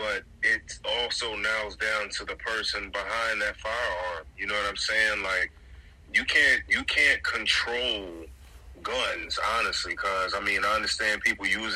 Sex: male